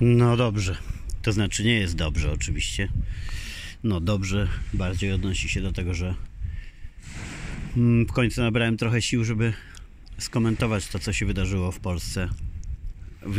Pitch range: 85-105 Hz